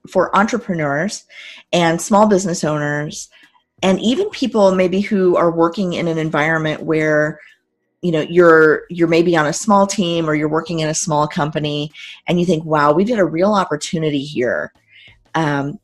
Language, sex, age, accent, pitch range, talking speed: English, female, 30-49, American, 155-195 Hz, 165 wpm